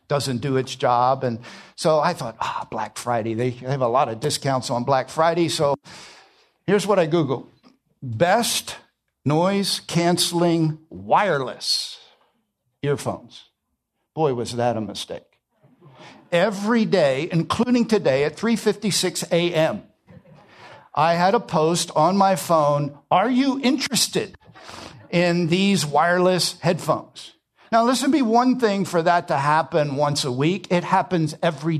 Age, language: 60-79, English